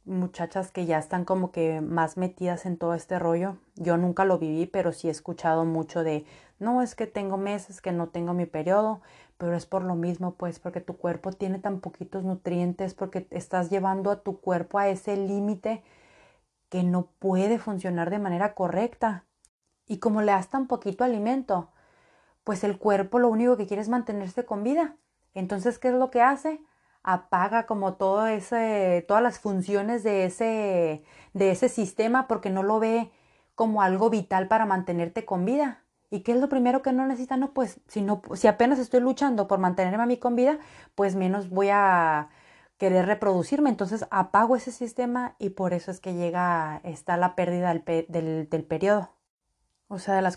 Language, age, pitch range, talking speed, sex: Spanish, 30-49, 180-220 Hz, 185 wpm, female